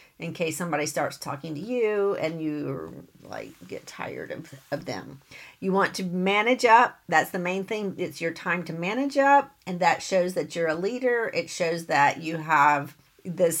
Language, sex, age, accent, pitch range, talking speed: English, female, 50-69, American, 175-235 Hz, 190 wpm